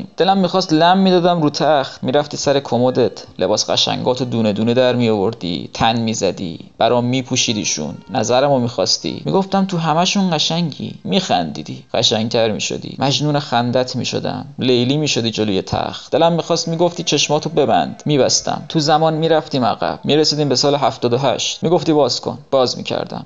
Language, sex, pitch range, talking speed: Persian, male, 125-160 Hz, 145 wpm